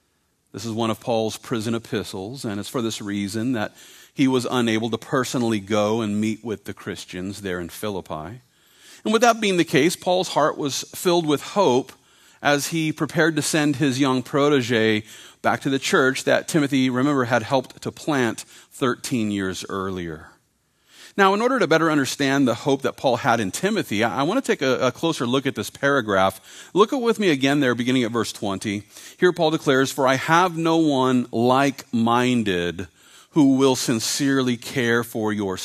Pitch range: 105-140 Hz